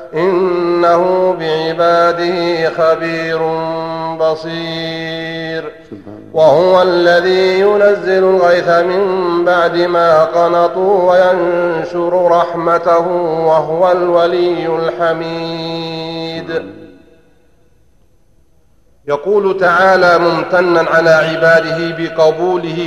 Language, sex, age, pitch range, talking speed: Arabic, male, 40-59, 160-175 Hz, 60 wpm